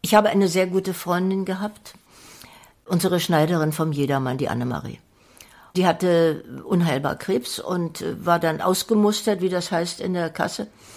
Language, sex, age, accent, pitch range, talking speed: German, female, 60-79, German, 160-190 Hz, 150 wpm